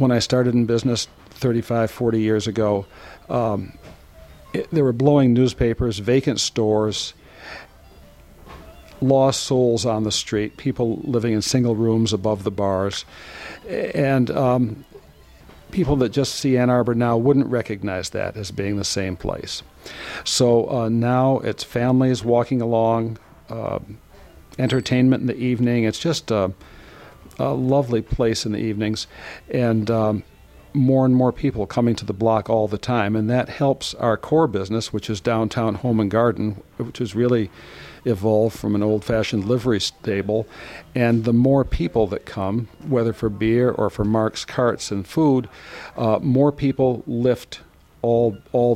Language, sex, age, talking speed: English, male, 50-69, 150 wpm